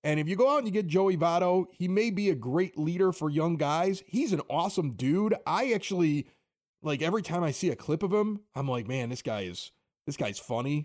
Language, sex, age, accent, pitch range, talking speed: English, male, 30-49, American, 130-185 Hz, 240 wpm